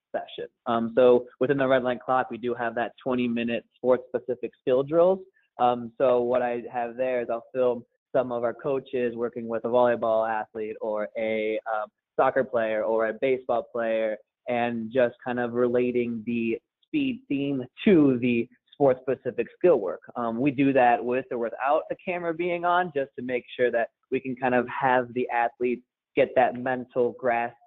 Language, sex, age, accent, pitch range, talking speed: English, male, 20-39, American, 115-135 Hz, 185 wpm